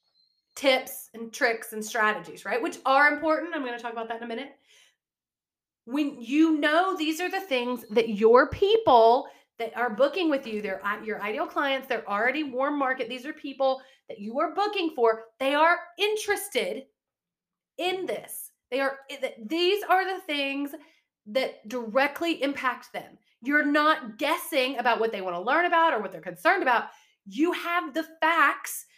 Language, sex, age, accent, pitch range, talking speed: English, female, 30-49, American, 235-325 Hz, 170 wpm